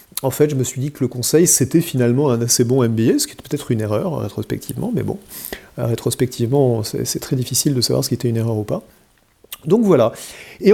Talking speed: 225 wpm